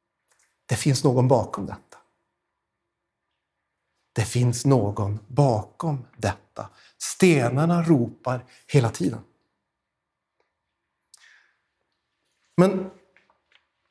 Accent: native